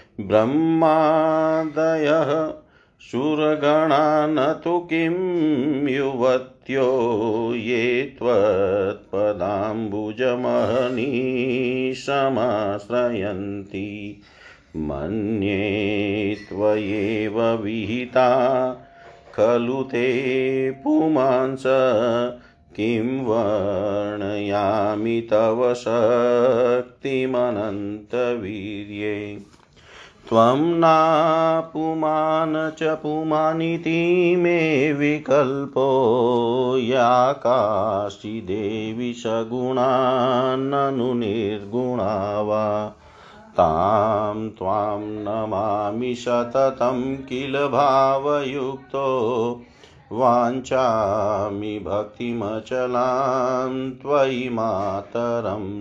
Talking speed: 35 wpm